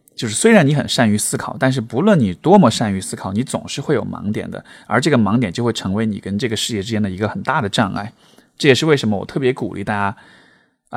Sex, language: male, Chinese